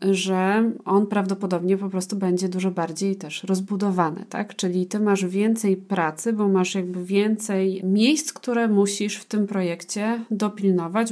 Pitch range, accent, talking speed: 180-210 Hz, native, 145 wpm